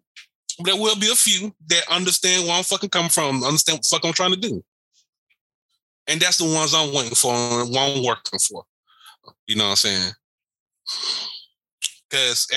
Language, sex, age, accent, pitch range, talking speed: English, male, 20-39, American, 140-190 Hz, 180 wpm